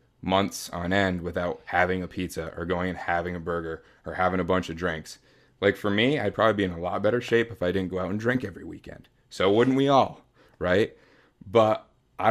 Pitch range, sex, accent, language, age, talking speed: 85-100 Hz, male, American, English, 30-49, 225 wpm